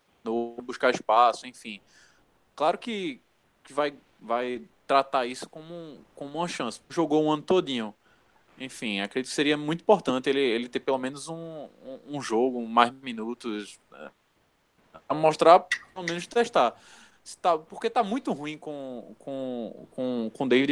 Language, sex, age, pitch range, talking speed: Portuguese, male, 20-39, 115-160 Hz, 155 wpm